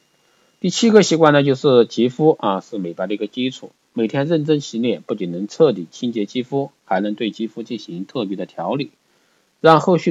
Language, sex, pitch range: Chinese, male, 105-145 Hz